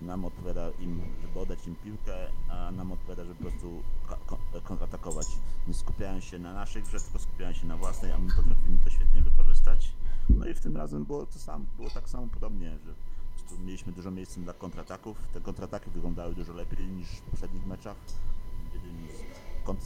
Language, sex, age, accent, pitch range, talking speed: Polish, male, 30-49, native, 85-95 Hz, 180 wpm